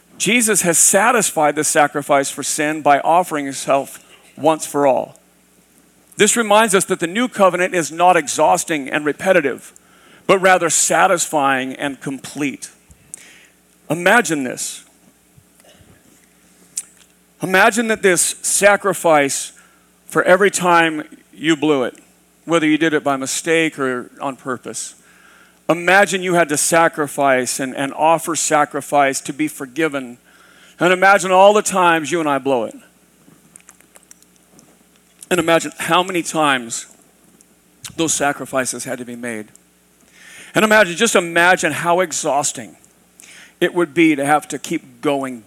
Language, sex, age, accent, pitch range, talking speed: English, male, 40-59, American, 125-170 Hz, 130 wpm